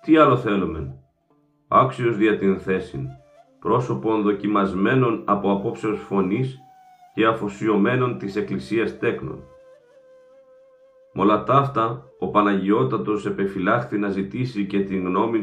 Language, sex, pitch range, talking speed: Greek, male, 95-145 Hz, 105 wpm